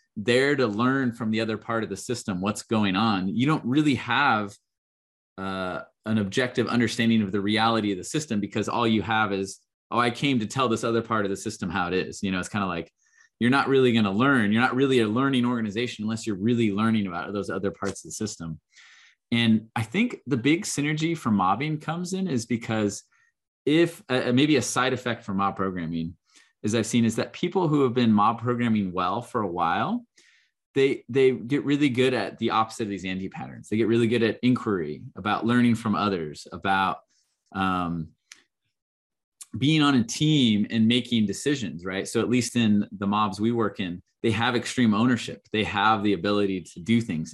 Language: English